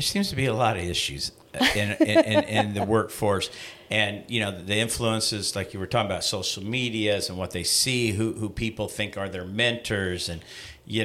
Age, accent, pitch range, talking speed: 50-69, American, 100-125 Hz, 210 wpm